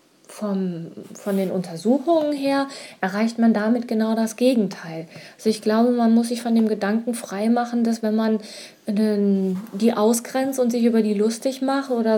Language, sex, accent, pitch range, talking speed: German, female, German, 215-255 Hz, 170 wpm